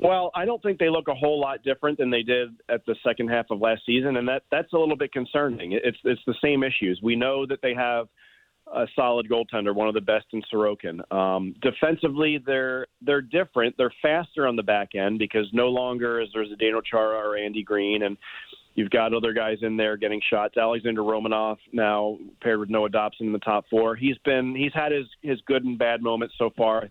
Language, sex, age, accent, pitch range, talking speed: English, male, 40-59, American, 110-135 Hz, 225 wpm